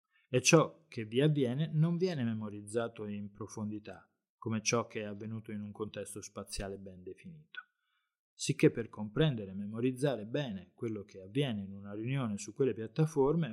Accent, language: native, Italian